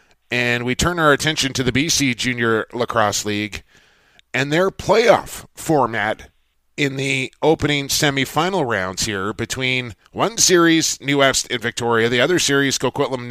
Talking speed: 150 wpm